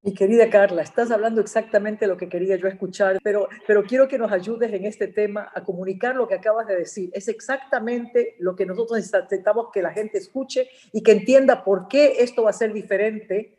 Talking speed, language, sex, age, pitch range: 210 wpm, Spanish, female, 50-69, 200-255 Hz